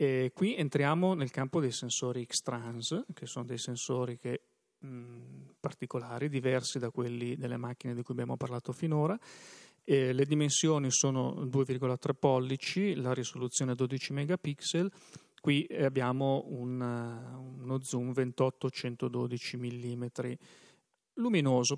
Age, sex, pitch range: 40-59, male, 125-145 Hz